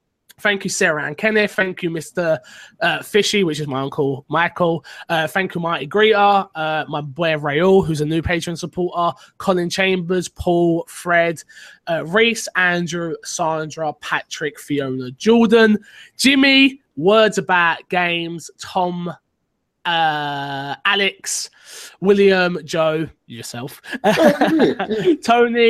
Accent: British